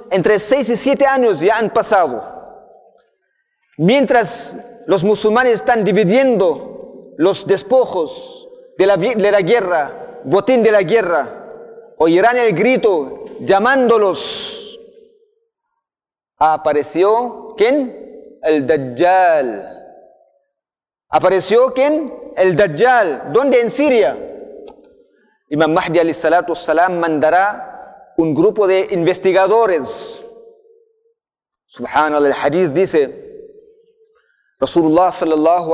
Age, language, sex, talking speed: 40-59, Spanish, male, 85 wpm